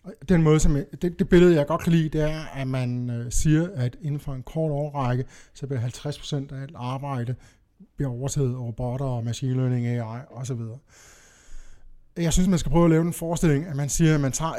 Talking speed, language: 220 wpm, Danish